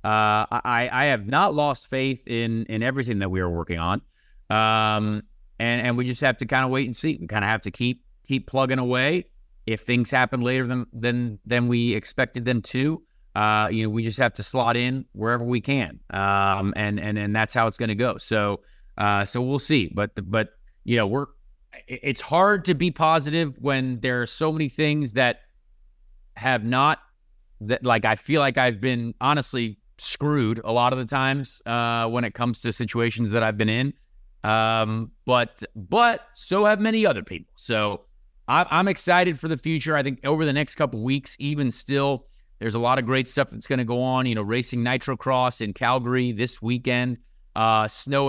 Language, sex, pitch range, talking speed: English, male, 110-130 Hz, 205 wpm